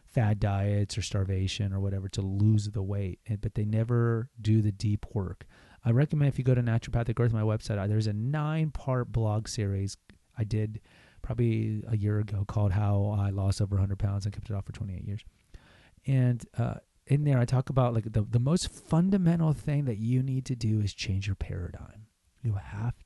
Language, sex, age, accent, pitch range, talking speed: English, male, 30-49, American, 105-130 Hz, 200 wpm